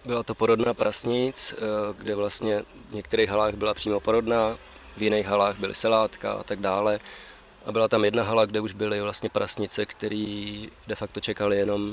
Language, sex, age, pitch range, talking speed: Czech, male, 20-39, 100-110 Hz, 175 wpm